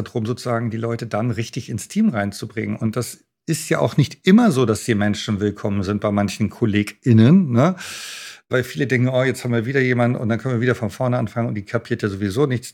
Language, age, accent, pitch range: German, 50-69, German, 110-140 Hz